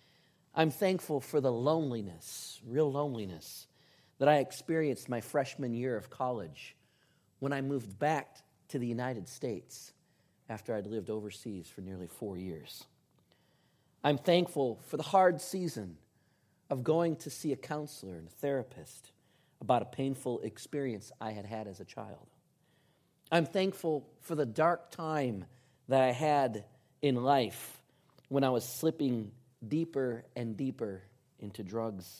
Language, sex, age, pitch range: English, male, 40-59, 110-150 Hz